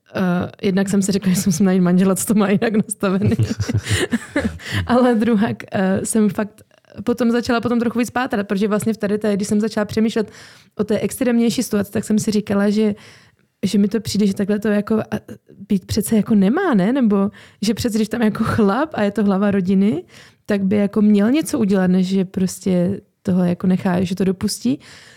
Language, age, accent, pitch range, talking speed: Czech, 20-39, native, 185-215 Hz, 200 wpm